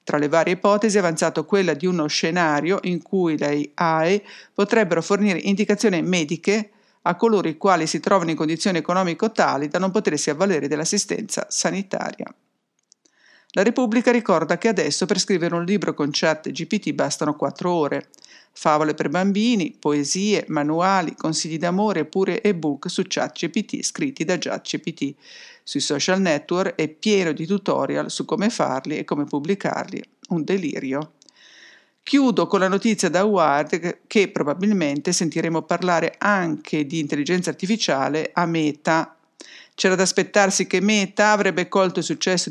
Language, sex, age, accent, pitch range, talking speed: English, female, 50-69, Italian, 160-200 Hz, 150 wpm